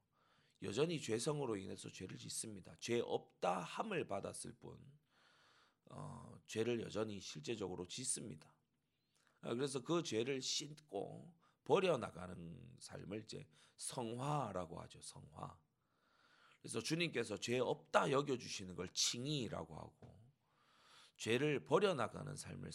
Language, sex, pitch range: Korean, male, 105-155 Hz